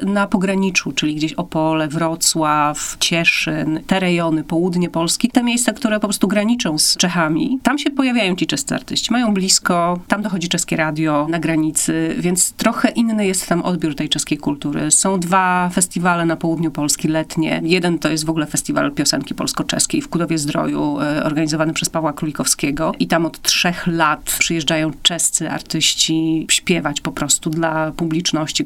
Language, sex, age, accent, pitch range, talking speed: Polish, female, 30-49, native, 160-195 Hz, 160 wpm